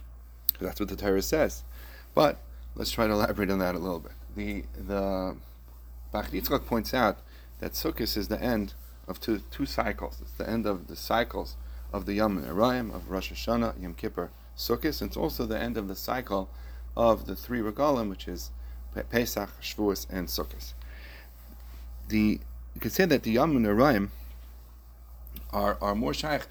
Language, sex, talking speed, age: English, male, 170 wpm, 40-59